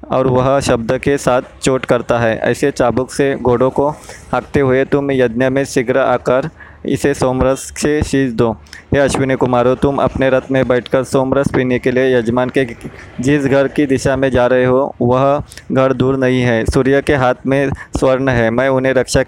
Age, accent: 20-39, native